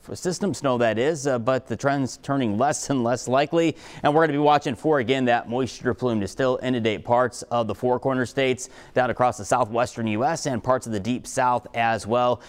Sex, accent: male, American